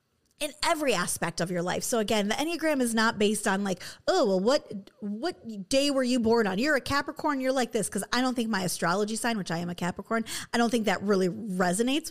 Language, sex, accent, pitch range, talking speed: English, female, American, 195-265 Hz, 240 wpm